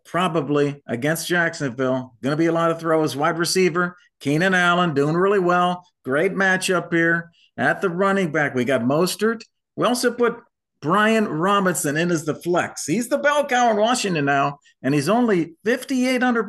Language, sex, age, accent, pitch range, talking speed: English, male, 50-69, American, 145-210 Hz, 170 wpm